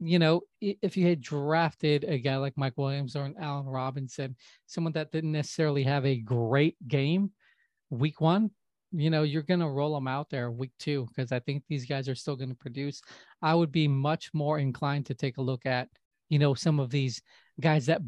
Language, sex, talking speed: English, male, 210 wpm